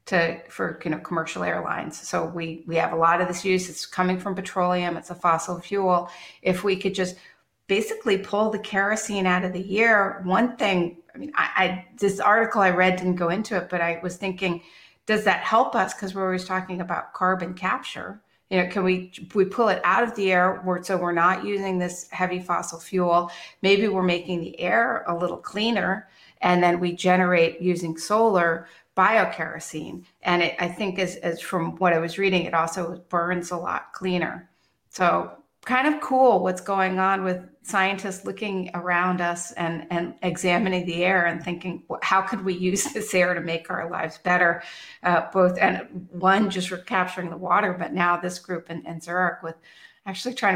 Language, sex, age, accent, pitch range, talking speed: English, female, 40-59, American, 175-195 Hz, 195 wpm